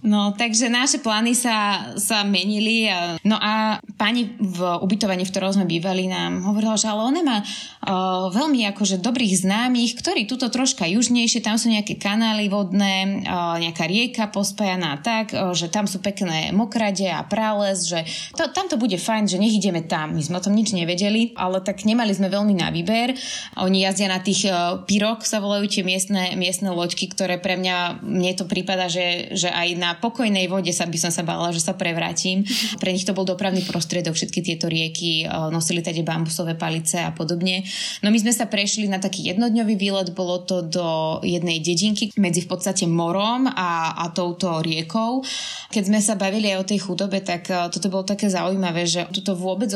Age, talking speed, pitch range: 20-39, 185 wpm, 180-215 Hz